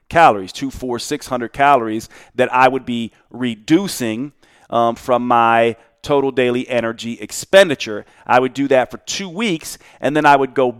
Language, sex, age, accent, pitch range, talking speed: English, male, 40-59, American, 120-155 Hz, 165 wpm